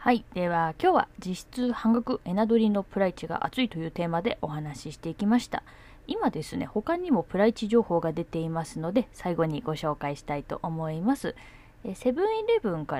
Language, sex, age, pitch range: Japanese, female, 20-39, 150-235 Hz